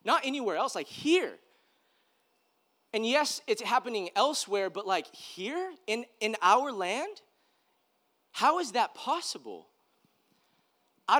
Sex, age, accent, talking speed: male, 30-49, American, 120 wpm